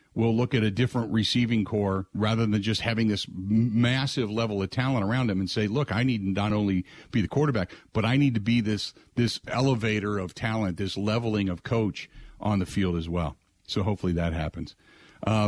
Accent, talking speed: American, 200 wpm